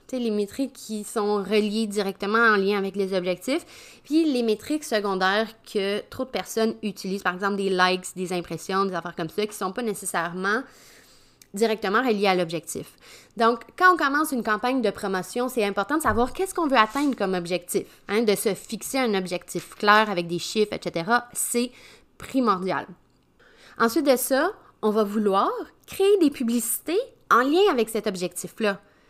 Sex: female